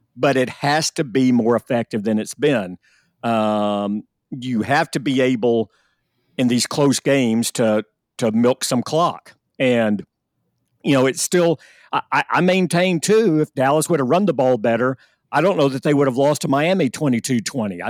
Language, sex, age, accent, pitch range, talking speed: English, male, 50-69, American, 115-145 Hz, 180 wpm